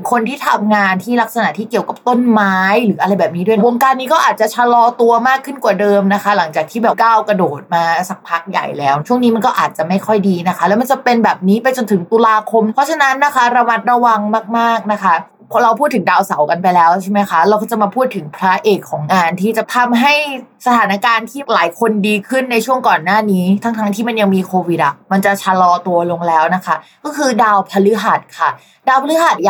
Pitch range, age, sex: 185-240 Hz, 20-39, female